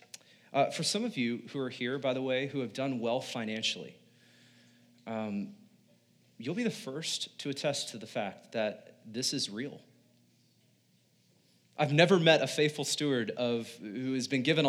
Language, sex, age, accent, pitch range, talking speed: English, male, 30-49, American, 130-170 Hz, 170 wpm